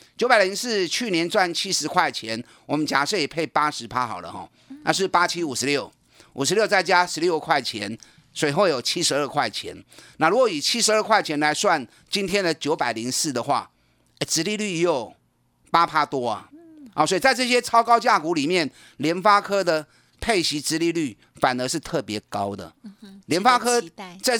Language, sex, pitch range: Chinese, male, 140-200 Hz